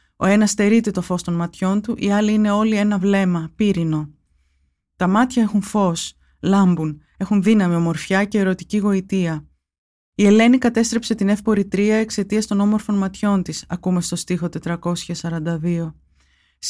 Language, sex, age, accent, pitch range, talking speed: Greek, female, 20-39, native, 170-205 Hz, 145 wpm